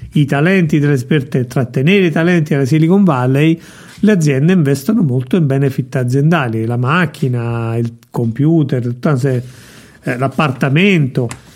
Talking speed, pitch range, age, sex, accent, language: 110 wpm, 125-160 Hz, 50-69, male, native, Italian